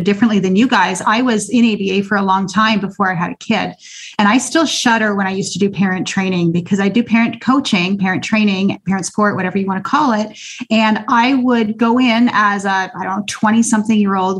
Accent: American